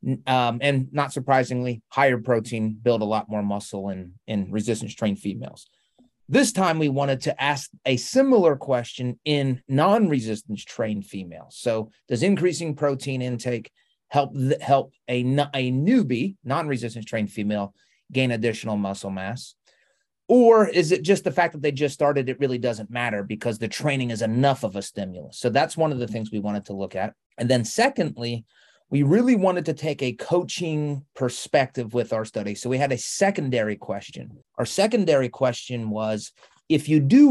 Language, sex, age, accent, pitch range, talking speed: English, male, 30-49, American, 110-150 Hz, 170 wpm